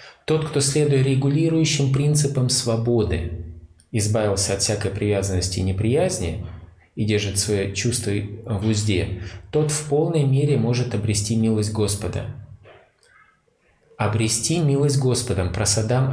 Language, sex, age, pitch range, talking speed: Russian, male, 20-39, 100-130 Hz, 110 wpm